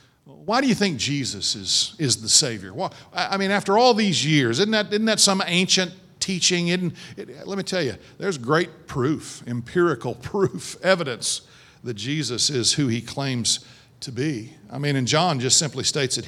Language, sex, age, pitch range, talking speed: English, male, 50-69, 115-155 Hz, 175 wpm